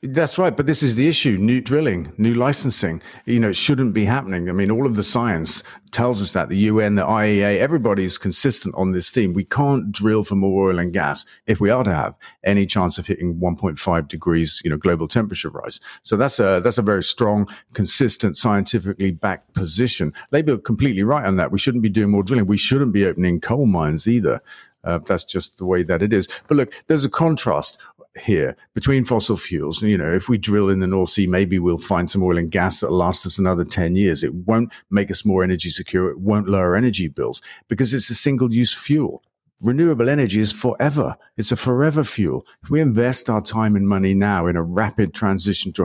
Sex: male